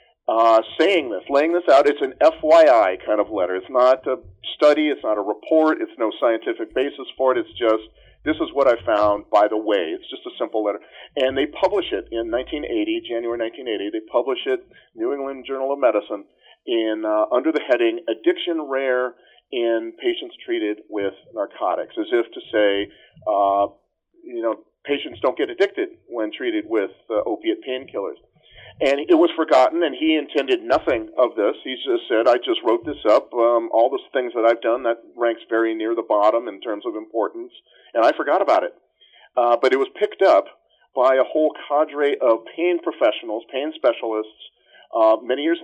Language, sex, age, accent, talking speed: English, male, 40-59, American, 190 wpm